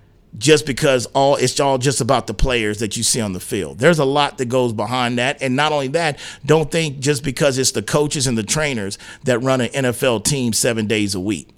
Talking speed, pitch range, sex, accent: 235 wpm, 115-150 Hz, male, American